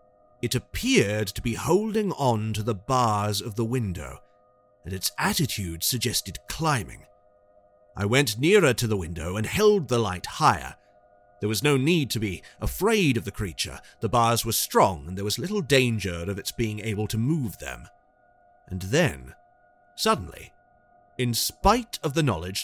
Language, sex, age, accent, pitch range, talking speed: English, male, 40-59, British, 105-175 Hz, 165 wpm